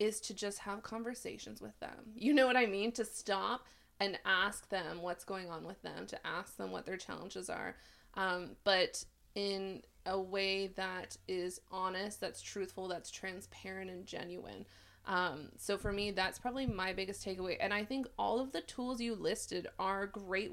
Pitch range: 190-225 Hz